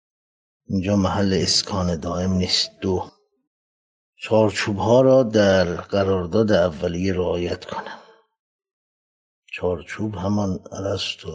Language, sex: Persian, male